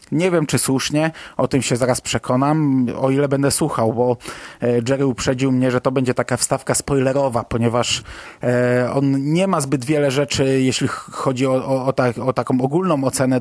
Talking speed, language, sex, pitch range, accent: 165 wpm, Polish, male, 120-140 Hz, native